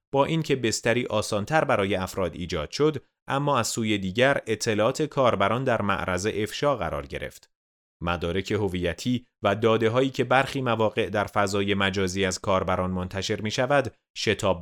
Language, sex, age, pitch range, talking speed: Persian, male, 30-49, 95-125 Hz, 150 wpm